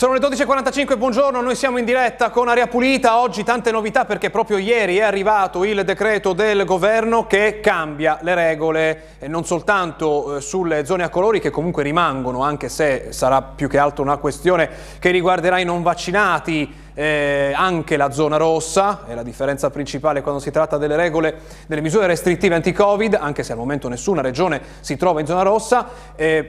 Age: 30-49